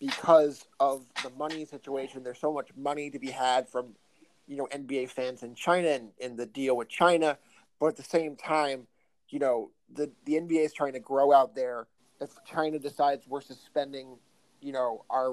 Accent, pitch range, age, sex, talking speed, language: American, 130-150 Hz, 30-49, male, 190 wpm, English